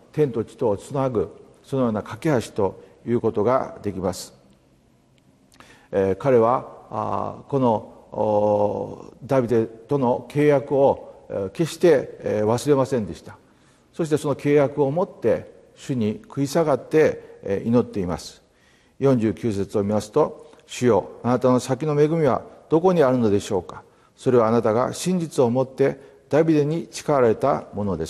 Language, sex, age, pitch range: Japanese, male, 50-69, 110-160 Hz